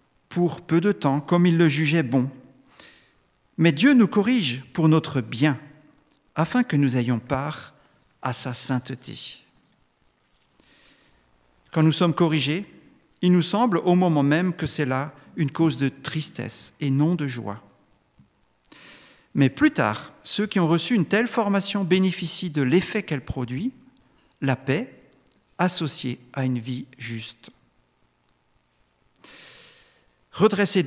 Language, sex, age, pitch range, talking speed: French, male, 50-69, 125-185 Hz, 130 wpm